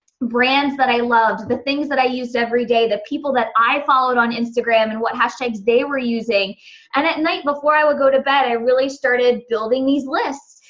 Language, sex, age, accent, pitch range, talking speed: English, female, 20-39, American, 235-275 Hz, 220 wpm